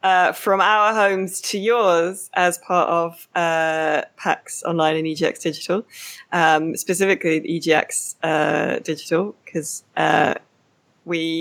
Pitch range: 155-180 Hz